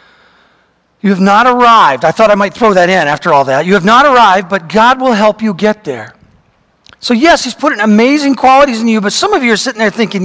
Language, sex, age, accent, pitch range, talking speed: English, male, 40-59, American, 190-235 Hz, 240 wpm